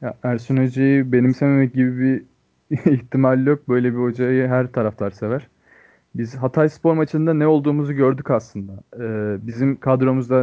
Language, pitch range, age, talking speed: Turkish, 115-145 Hz, 30-49, 145 wpm